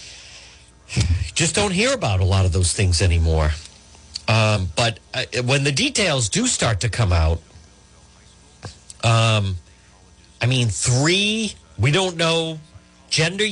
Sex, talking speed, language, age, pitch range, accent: male, 130 wpm, English, 50-69, 95-155 Hz, American